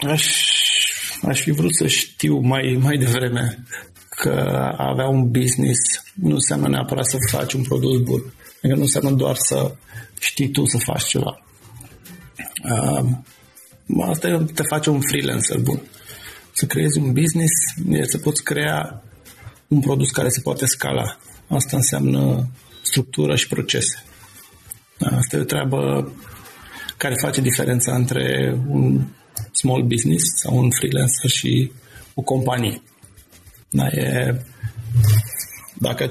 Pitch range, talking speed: 100-130 Hz, 130 wpm